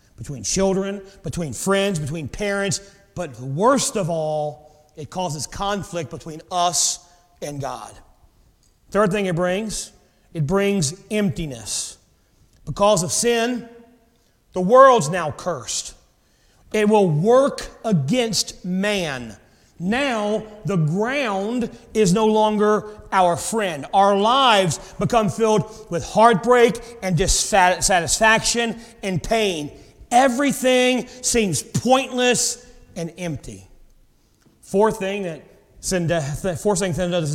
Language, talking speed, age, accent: English, 100 wpm, 40-59, American